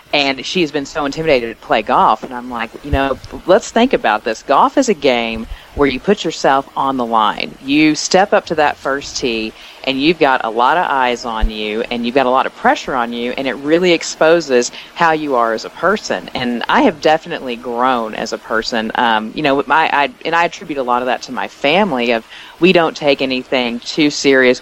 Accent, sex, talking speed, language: American, female, 225 wpm, English